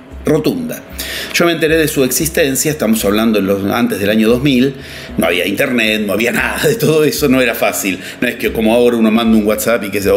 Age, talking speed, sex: 30-49, 230 wpm, male